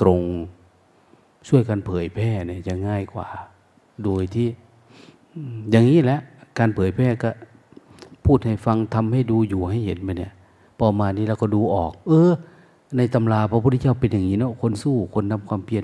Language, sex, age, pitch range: Thai, male, 30-49, 95-120 Hz